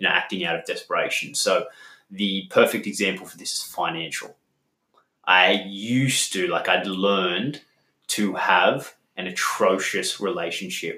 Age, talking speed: 20-39, 125 wpm